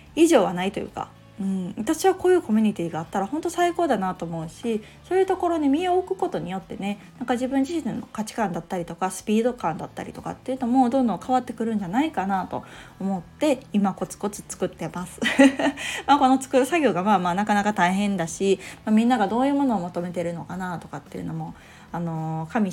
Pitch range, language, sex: 185-255 Hz, Japanese, female